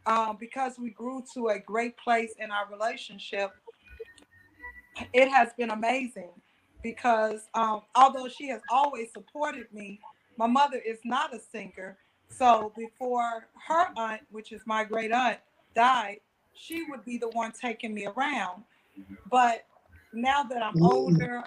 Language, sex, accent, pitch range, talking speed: English, female, American, 220-250 Hz, 145 wpm